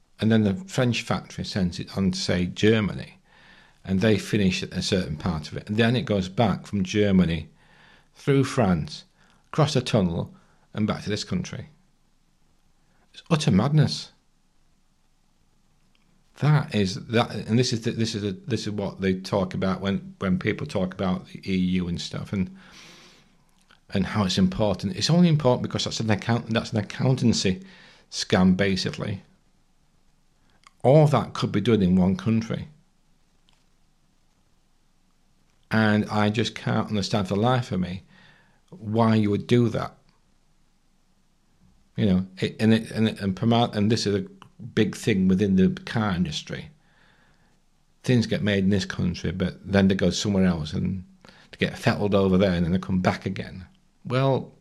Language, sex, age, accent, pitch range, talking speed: English, male, 50-69, British, 95-130 Hz, 160 wpm